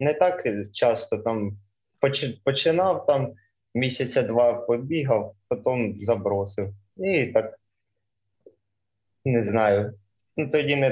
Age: 20-39